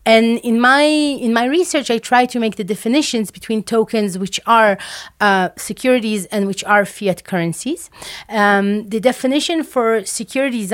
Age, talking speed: 30-49, 155 wpm